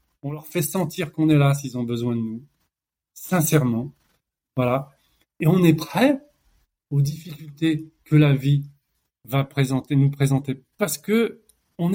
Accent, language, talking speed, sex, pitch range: French, French, 150 wpm, male, 140-220 Hz